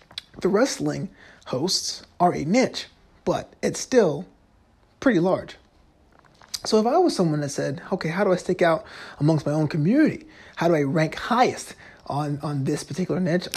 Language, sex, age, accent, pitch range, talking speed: English, male, 20-39, American, 150-200 Hz, 170 wpm